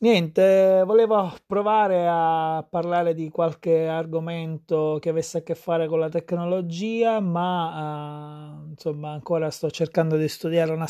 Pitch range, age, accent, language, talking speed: 155-175 Hz, 20-39, native, Italian, 140 wpm